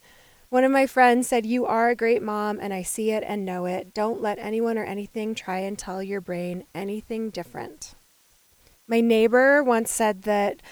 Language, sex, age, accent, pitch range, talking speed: English, female, 20-39, American, 205-255 Hz, 190 wpm